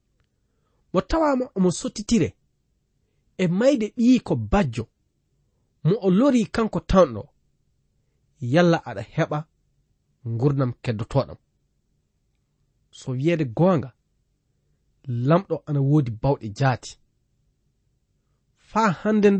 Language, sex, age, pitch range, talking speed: English, male, 40-59, 130-190 Hz, 85 wpm